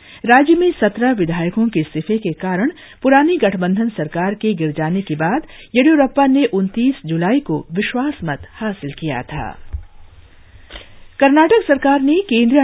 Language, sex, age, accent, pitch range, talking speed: English, female, 50-69, Indian, 160-245 Hz, 140 wpm